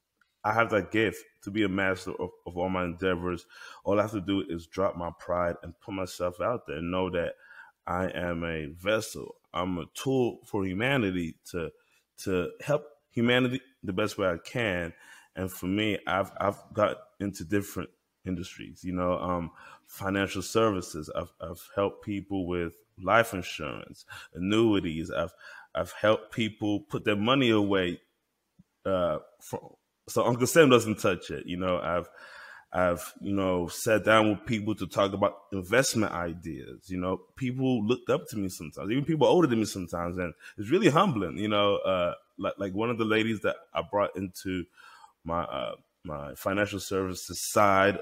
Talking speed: 170 wpm